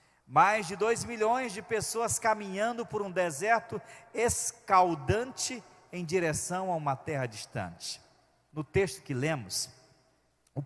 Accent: Brazilian